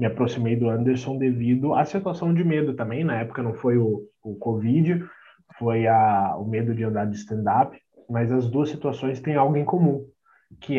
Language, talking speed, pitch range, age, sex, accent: Portuguese, 190 wpm, 120-160 Hz, 20-39, male, Brazilian